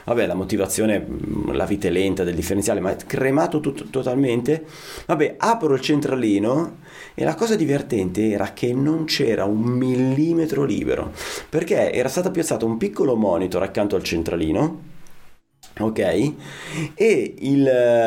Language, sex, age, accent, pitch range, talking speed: Italian, male, 30-49, native, 105-160 Hz, 140 wpm